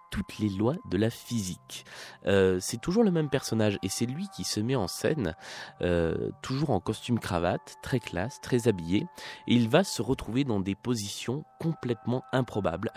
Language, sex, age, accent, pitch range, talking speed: French, male, 20-39, French, 95-125 Hz, 180 wpm